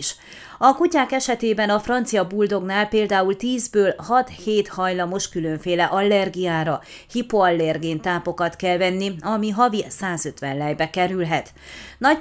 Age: 30-49